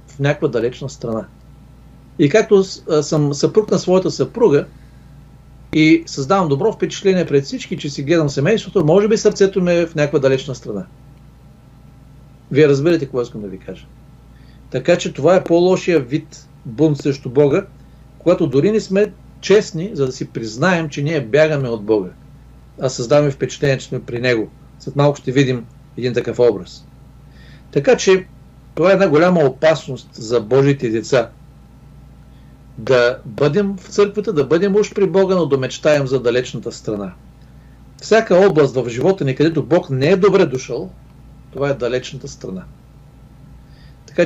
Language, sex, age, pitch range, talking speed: Bulgarian, male, 50-69, 130-175 Hz, 155 wpm